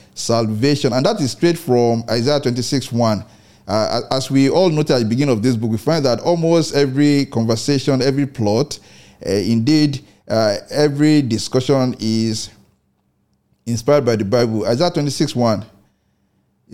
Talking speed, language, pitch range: 135 wpm, English, 105-135 Hz